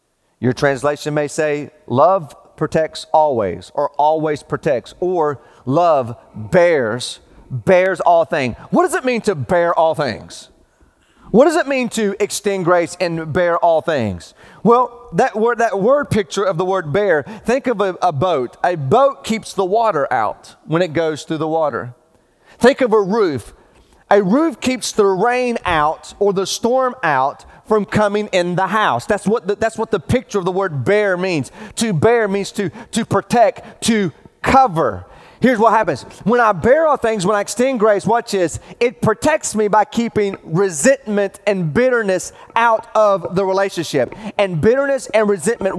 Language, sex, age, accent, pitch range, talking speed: English, male, 30-49, American, 165-230 Hz, 170 wpm